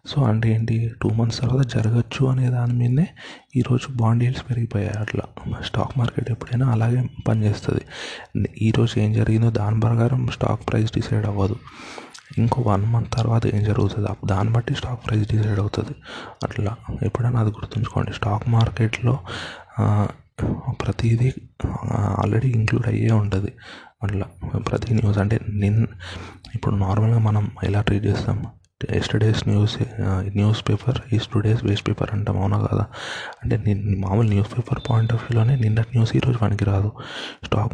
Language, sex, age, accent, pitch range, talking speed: Telugu, male, 20-39, native, 105-120 Hz, 140 wpm